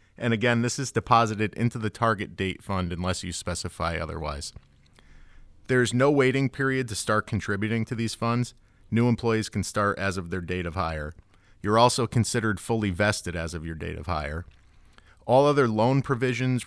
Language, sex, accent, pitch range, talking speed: English, male, American, 90-115 Hz, 175 wpm